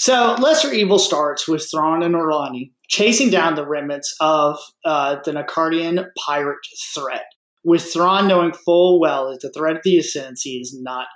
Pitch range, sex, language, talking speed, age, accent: 145-195 Hz, male, English, 165 wpm, 30-49, American